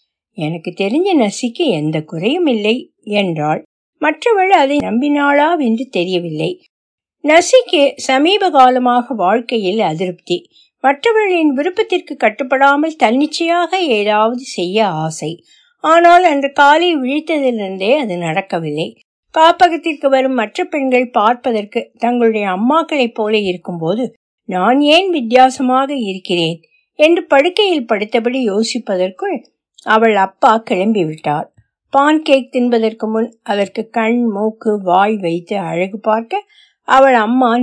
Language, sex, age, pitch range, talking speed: Tamil, female, 60-79, 180-275 Hz, 85 wpm